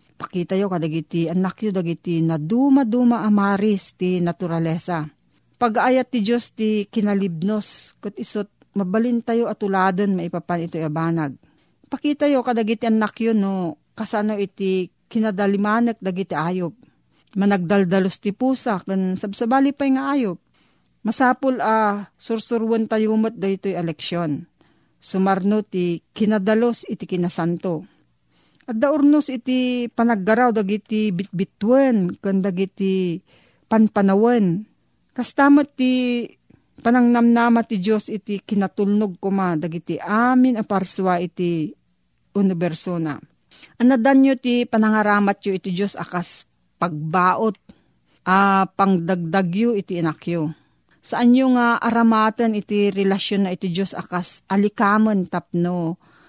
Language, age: Filipino, 40-59